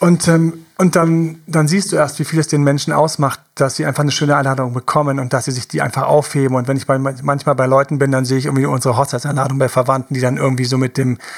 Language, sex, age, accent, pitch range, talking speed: German, male, 40-59, German, 130-155 Hz, 265 wpm